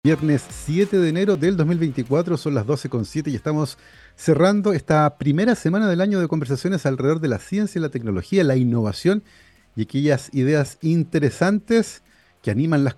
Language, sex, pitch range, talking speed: Spanish, male, 130-170 Hz, 160 wpm